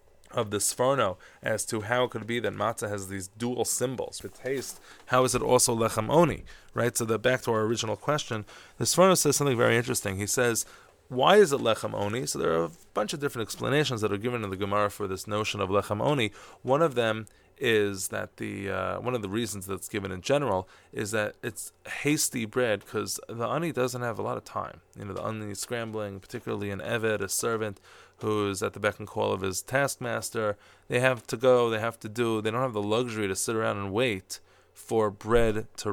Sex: male